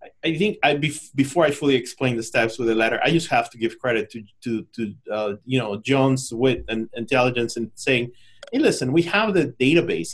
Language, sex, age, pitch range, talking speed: English, male, 30-49, 115-140 Hz, 215 wpm